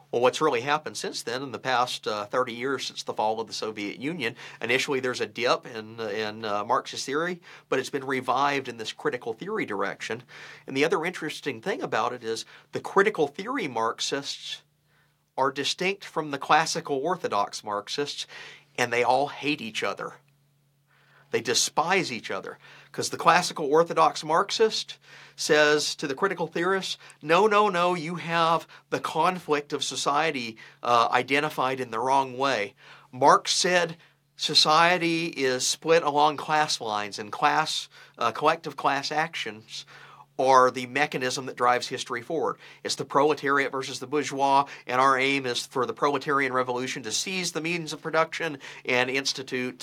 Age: 50-69